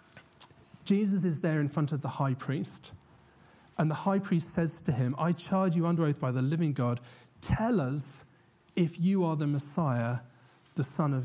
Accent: British